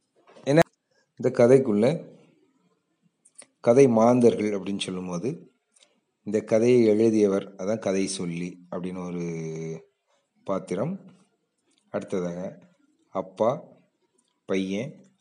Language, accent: Tamil, native